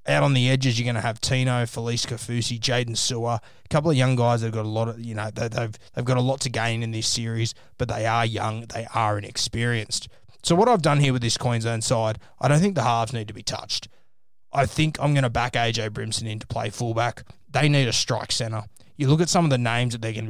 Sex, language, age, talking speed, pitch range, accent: male, English, 20-39, 260 wpm, 115-130 Hz, Australian